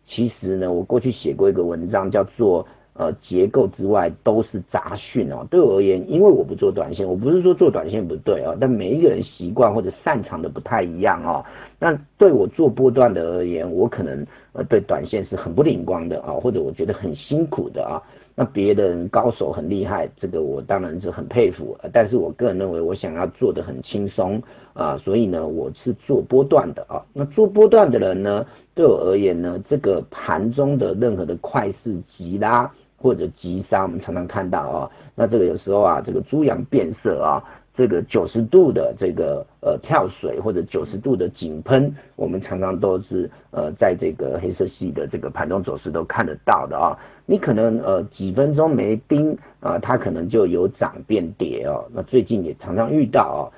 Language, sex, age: Chinese, male, 50-69